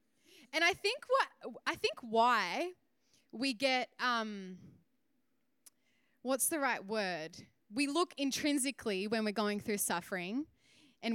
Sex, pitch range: female, 205-270 Hz